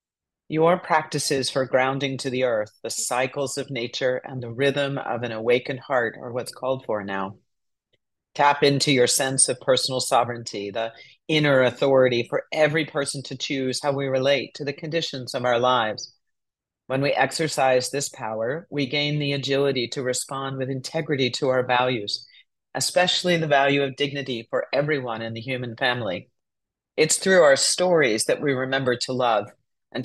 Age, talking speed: 40-59, 170 wpm